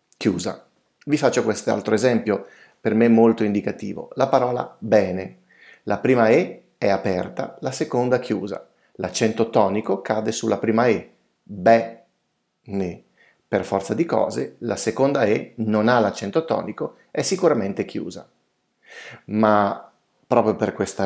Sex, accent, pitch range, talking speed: male, native, 100-120 Hz, 130 wpm